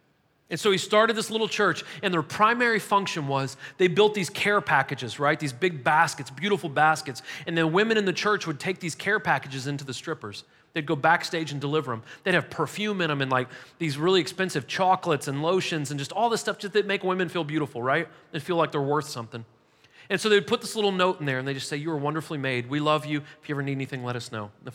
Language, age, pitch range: English, 40-59, 145-200 Hz